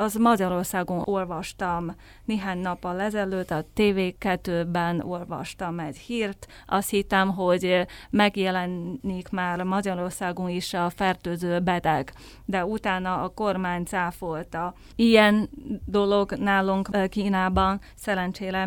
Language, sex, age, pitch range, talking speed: Hungarian, female, 30-49, 180-210 Hz, 100 wpm